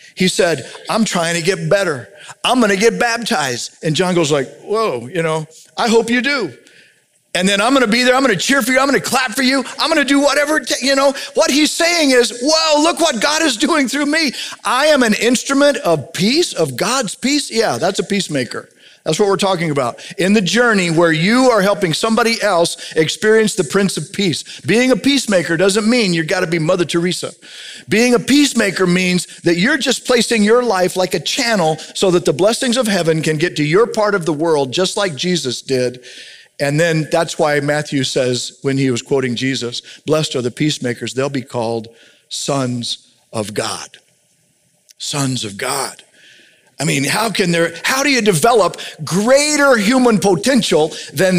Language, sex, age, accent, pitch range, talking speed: English, male, 40-59, American, 165-245 Hz, 200 wpm